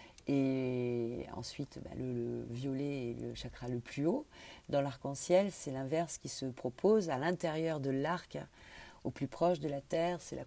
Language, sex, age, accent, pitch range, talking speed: French, female, 40-59, French, 135-175 Hz, 180 wpm